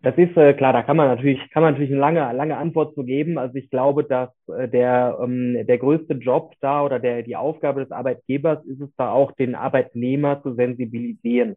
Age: 20-39